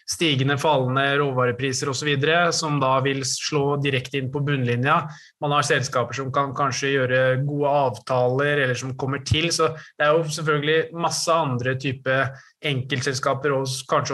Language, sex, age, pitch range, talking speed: English, male, 20-39, 130-145 Hz, 165 wpm